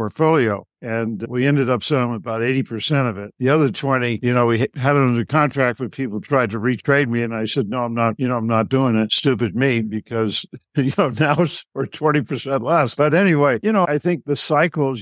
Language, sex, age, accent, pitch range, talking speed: English, male, 60-79, American, 115-140 Hz, 220 wpm